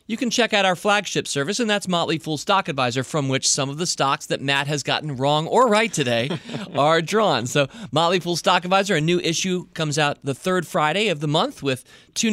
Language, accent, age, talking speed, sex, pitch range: English, American, 40-59, 230 wpm, male, 135-185 Hz